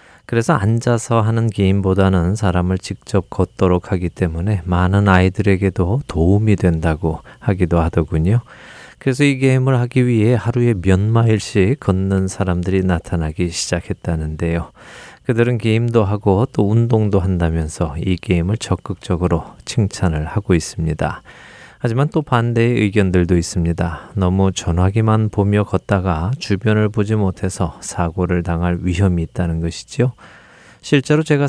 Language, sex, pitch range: Korean, male, 90-115 Hz